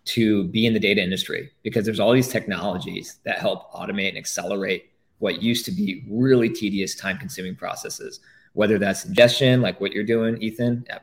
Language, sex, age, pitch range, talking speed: English, male, 20-39, 105-125 Hz, 180 wpm